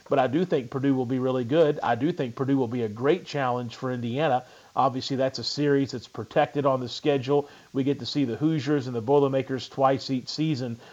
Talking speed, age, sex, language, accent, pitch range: 225 wpm, 40-59, male, English, American, 130-155 Hz